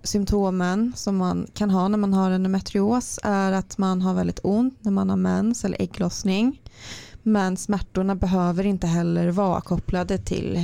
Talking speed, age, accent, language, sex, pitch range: 170 wpm, 20-39, native, Swedish, female, 155-205 Hz